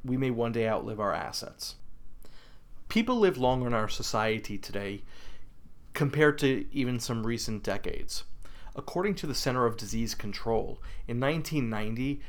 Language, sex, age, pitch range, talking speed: English, male, 40-59, 115-140 Hz, 140 wpm